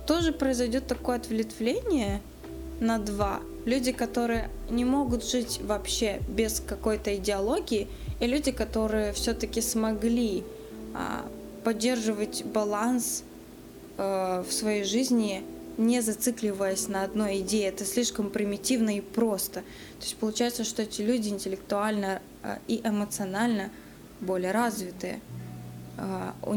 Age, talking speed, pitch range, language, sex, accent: 20-39, 105 wpm, 190-225 Hz, Russian, female, native